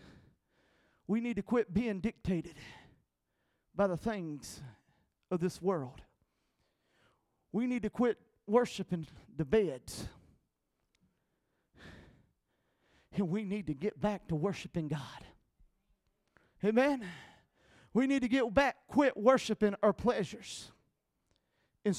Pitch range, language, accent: 155-215 Hz, English, American